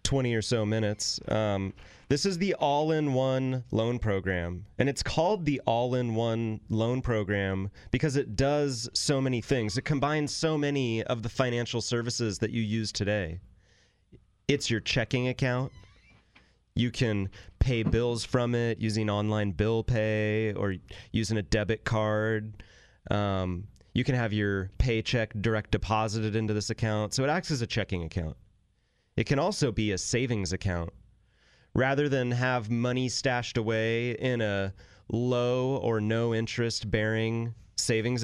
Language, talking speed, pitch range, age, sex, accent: English, 155 wpm, 105-125 Hz, 30-49, male, American